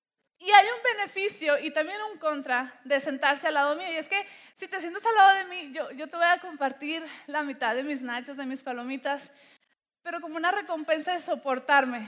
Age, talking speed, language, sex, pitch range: 20-39, 215 wpm, Spanish, female, 265-340 Hz